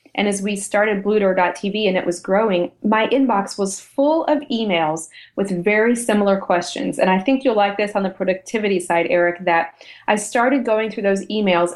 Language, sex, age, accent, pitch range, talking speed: English, female, 30-49, American, 185-225 Hz, 190 wpm